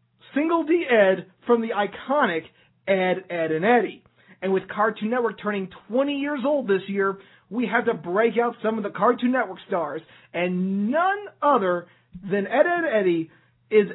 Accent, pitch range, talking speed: American, 165-230 Hz, 165 wpm